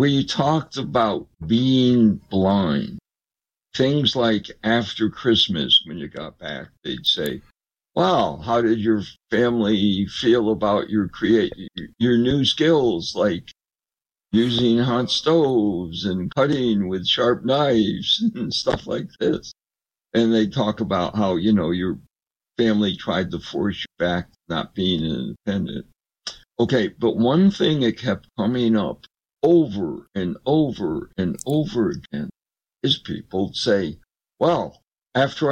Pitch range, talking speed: 105-135 Hz, 130 wpm